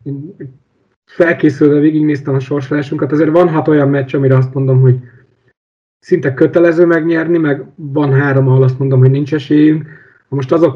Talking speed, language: 160 wpm, Hungarian